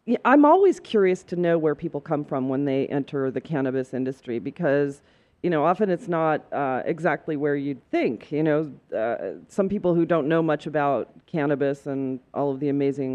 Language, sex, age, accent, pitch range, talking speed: English, female, 40-59, American, 140-175 Hz, 190 wpm